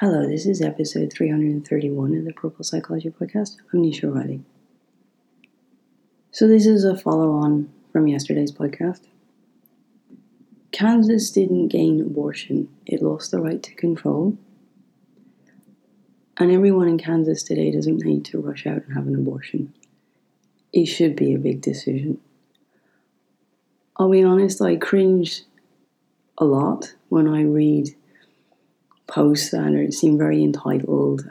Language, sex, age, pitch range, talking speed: English, female, 30-49, 145-190 Hz, 130 wpm